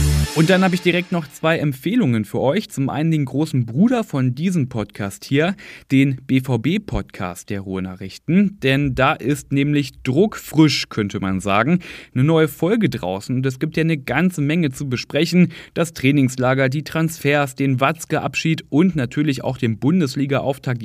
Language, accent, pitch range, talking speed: German, German, 120-160 Hz, 160 wpm